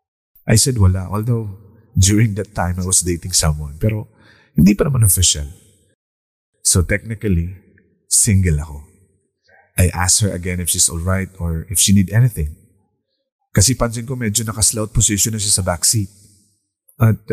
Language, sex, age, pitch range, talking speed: Filipino, male, 30-49, 90-110 Hz, 150 wpm